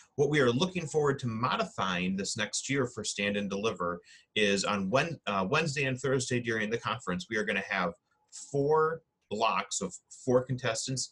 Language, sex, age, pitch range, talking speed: English, male, 30-49, 95-125 Hz, 185 wpm